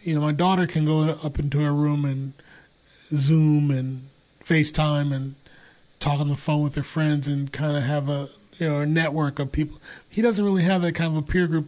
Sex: male